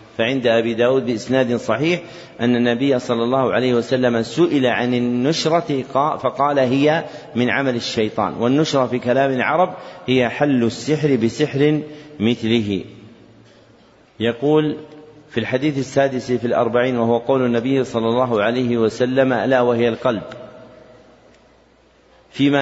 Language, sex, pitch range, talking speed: Arabic, male, 120-150 Hz, 120 wpm